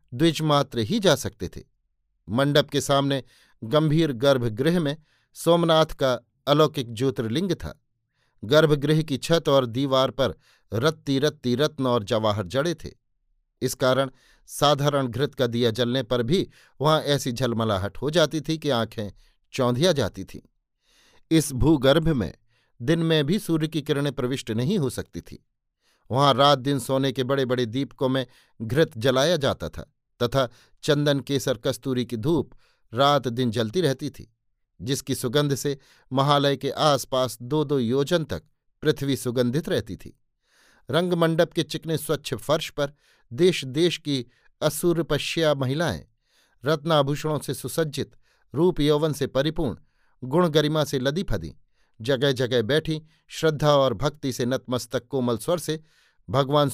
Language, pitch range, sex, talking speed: Hindi, 125-155 Hz, male, 145 wpm